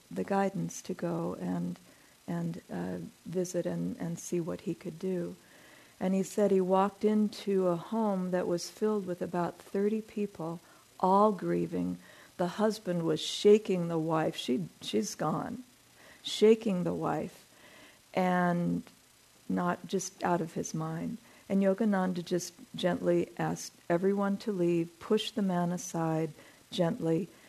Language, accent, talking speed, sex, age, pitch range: English, American, 140 wpm, female, 50-69, 170-195 Hz